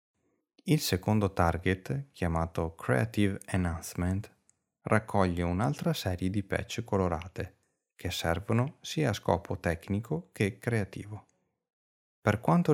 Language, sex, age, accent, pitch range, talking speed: Italian, male, 30-49, native, 90-120 Hz, 105 wpm